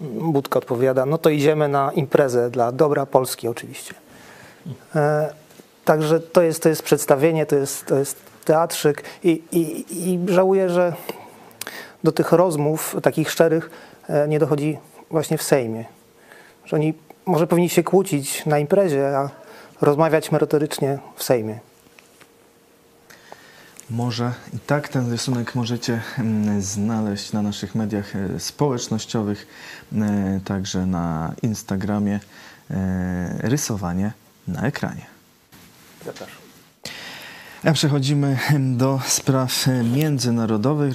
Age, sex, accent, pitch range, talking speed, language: 30-49, male, native, 110-155 Hz, 105 wpm, Polish